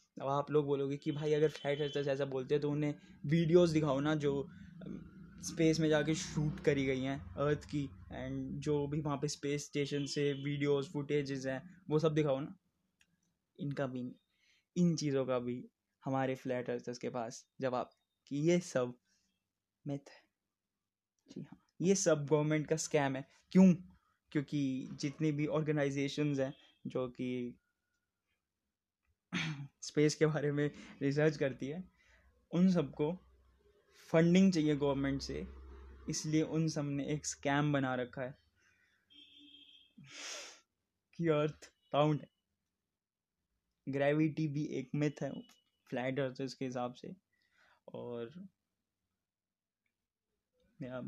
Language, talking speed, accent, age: Hindi, 125 wpm, native, 20-39